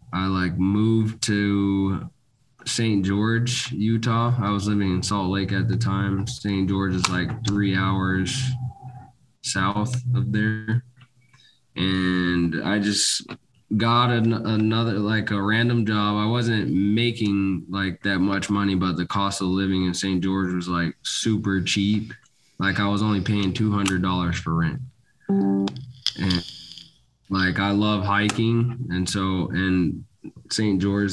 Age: 20-39